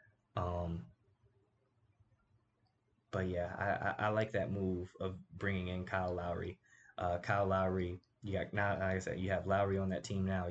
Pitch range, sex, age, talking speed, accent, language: 90-110 Hz, male, 20-39, 170 wpm, American, English